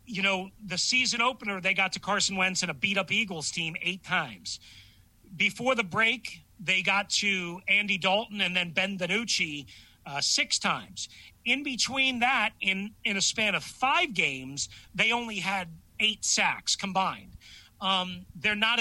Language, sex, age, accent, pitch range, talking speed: English, male, 40-59, American, 155-205 Hz, 165 wpm